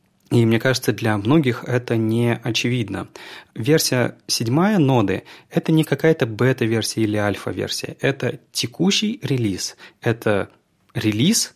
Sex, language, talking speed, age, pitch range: male, Russian, 120 wpm, 30-49, 110-145 Hz